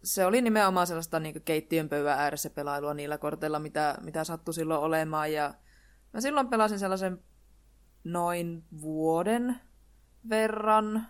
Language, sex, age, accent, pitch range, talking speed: Finnish, female, 20-39, native, 155-195 Hz, 125 wpm